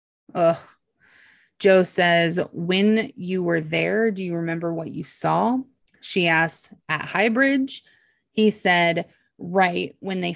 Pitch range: 170-200 Hz